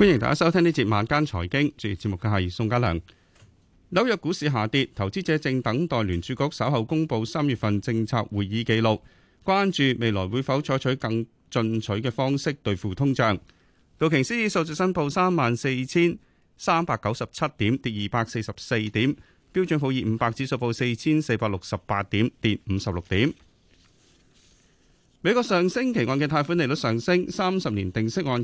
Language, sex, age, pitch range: Chinese, male, 30-49, 110-155 Hz